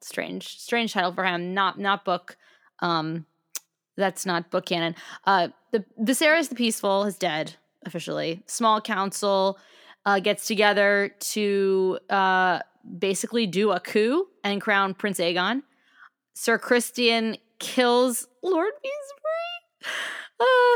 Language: English